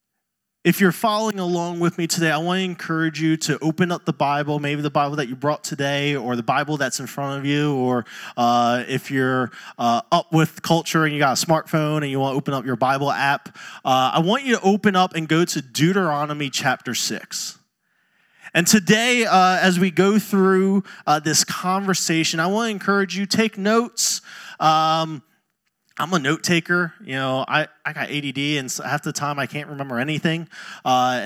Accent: American